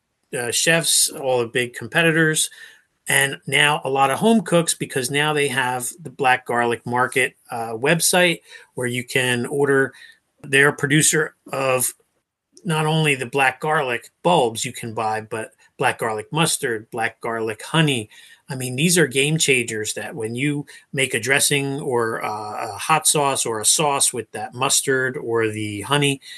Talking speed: 165 wpm